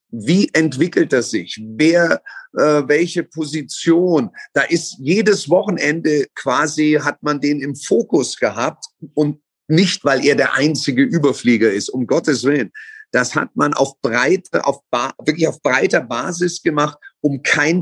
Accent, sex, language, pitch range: German, male, German, 135-170 Hz